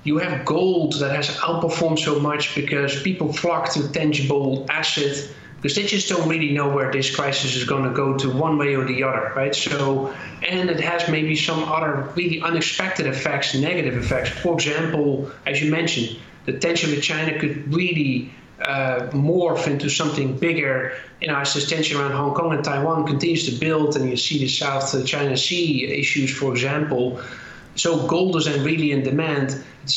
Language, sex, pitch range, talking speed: English, male, 140-160 Hz, 180 wpm